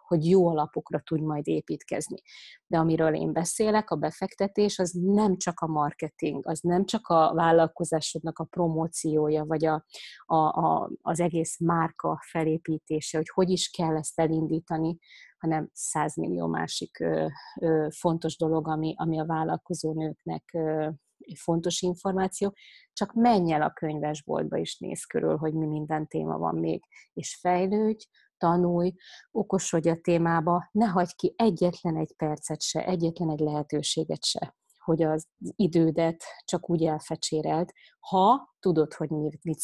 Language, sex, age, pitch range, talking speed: Hungarian, female, 30-49, 155-175 Hz, 140 wpm